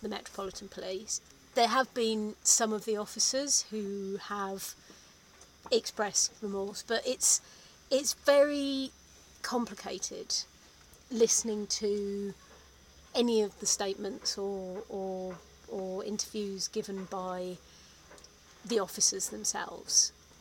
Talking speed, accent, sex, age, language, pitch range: 95 wpm, British, female, 30-49, English, 195-230 Hz